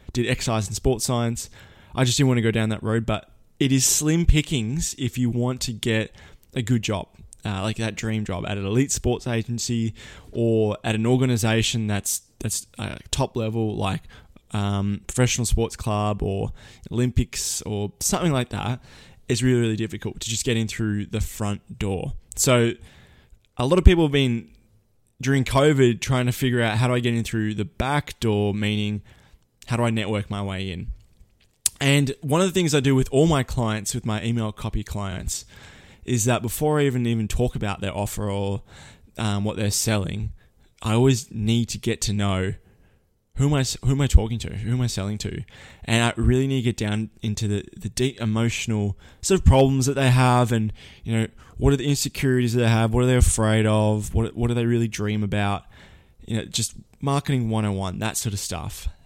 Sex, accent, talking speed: male, Australian, 200 wpm